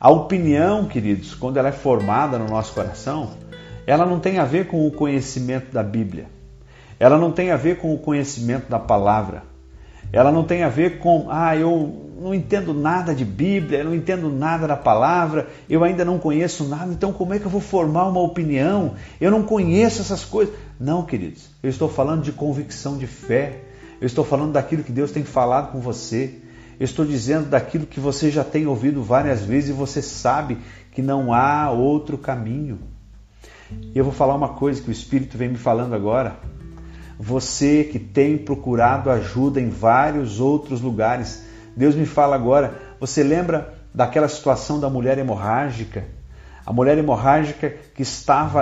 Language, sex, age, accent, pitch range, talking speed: Portuguese, male, 50-69, Brazilian, 125-155 Hz, 175 wpm